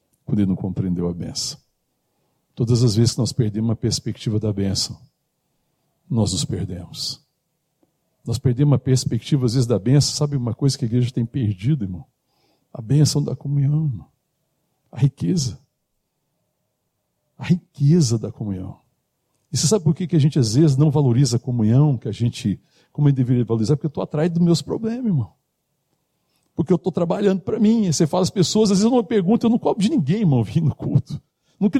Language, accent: Portuguese, Brazilian